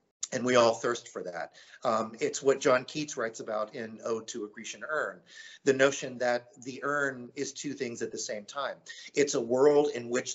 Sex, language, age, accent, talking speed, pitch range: male, English, 40-59, American, 210 wpm, 115-145 Hz